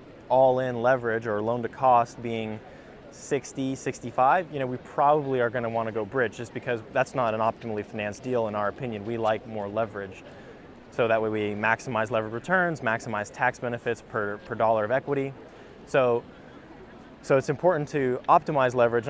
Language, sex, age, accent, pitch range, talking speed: English, male, 20-39, American, 115-135 Hz, 180 wpm